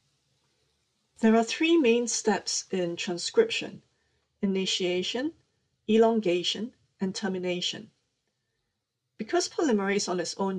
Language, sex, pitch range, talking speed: English, female, 180-225 Hz, 90 wpm